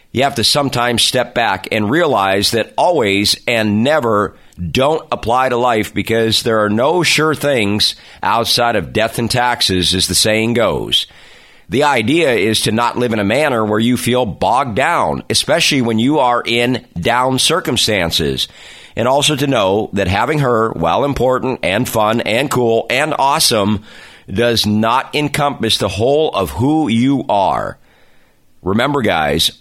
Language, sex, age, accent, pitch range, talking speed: English, male, 50-69, American, 110-145 Hz, 160 wpm